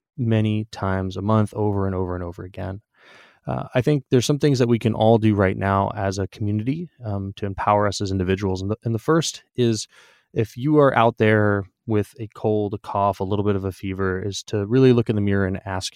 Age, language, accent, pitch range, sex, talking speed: 20-39, English, American, 100-120 Hz, male, 235 wpm